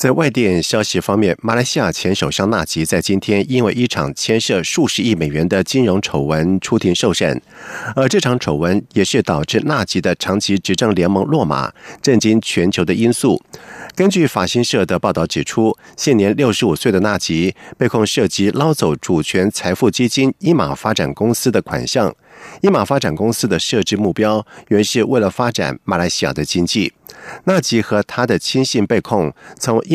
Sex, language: male, German